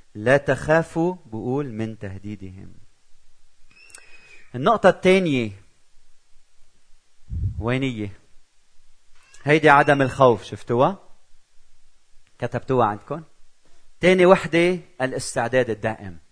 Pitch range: 110-155 Hz